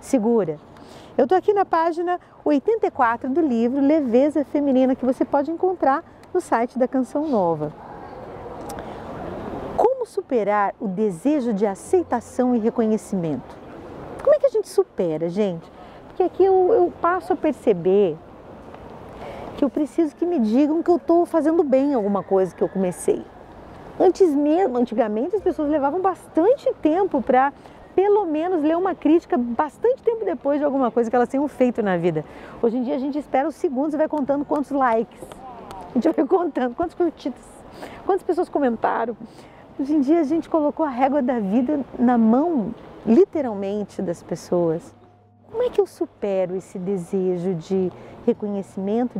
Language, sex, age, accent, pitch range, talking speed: Portuguese, female, 40-59, Brazilian, 210-320 Hz, 160 wpm